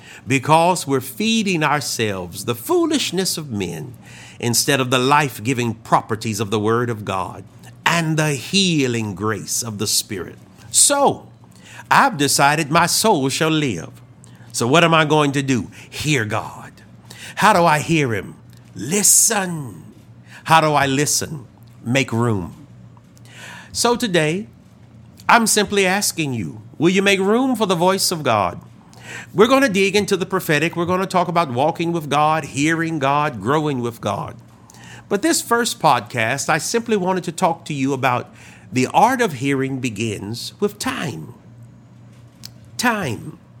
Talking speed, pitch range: 150 wpm, 120-185 Hz